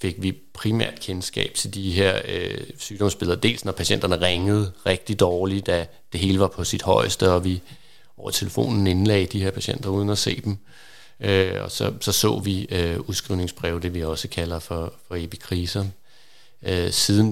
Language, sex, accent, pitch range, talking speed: Danish, male, native, 90-100 Hz, 175 wpm